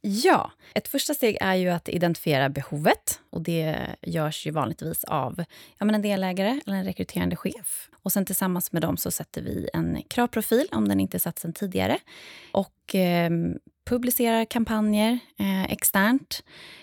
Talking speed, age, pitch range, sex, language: 155 wpm, 20-39, 170-210 Hz, female, Swedish